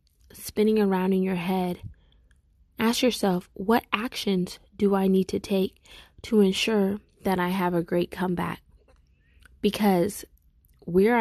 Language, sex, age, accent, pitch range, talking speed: English, female, 20-39, American, 175-205 Hz, 130 wpm